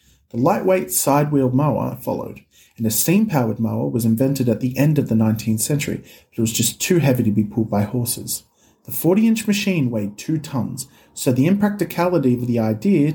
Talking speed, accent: 190 wpm, Australian